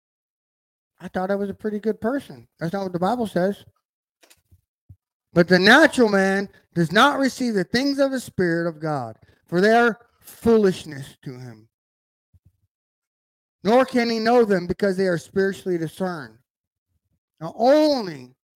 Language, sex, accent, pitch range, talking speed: English, male, American, 155-215 Hz, 150 wpm